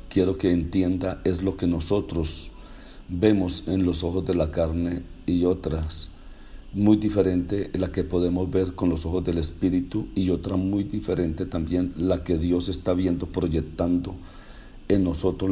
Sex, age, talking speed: male, 50-69, 155 wpm